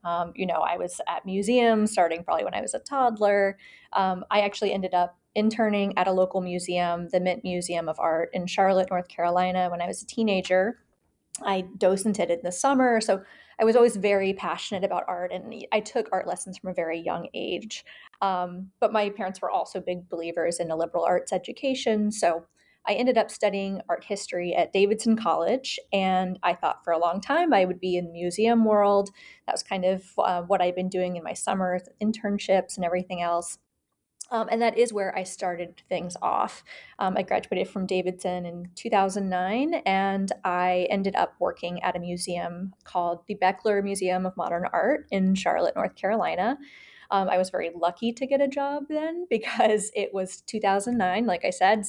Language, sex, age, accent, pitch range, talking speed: English, female, 20-39, American, 180-215 Hz, 190 wpm